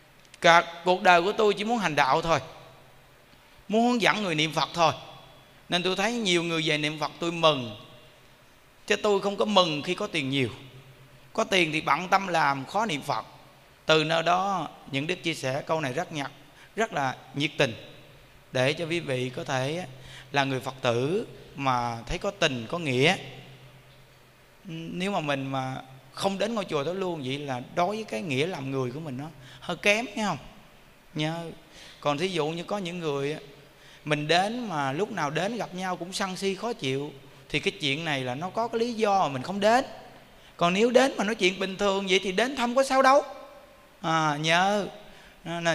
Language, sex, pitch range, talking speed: Vietnamese, male, 140-185 Hz, 205 wpm